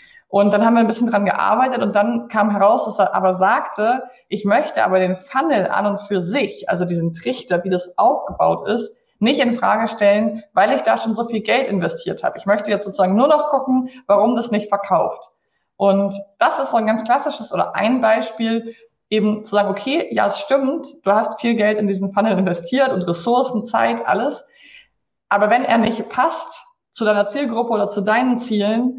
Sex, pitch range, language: female, 195-240 Hz, German